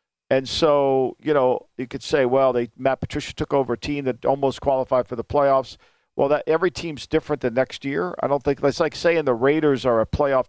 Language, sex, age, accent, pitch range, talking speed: English, male, 50-69, American, 135-175 Hz, 230 wpm